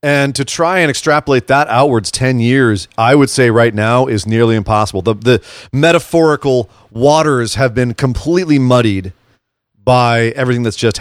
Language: English